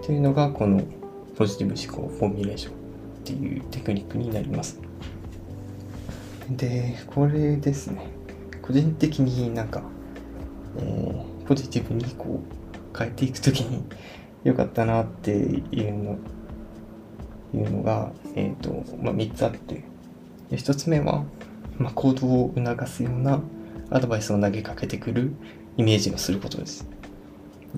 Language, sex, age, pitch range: Japanese, male, 20-39, 95-125 Hz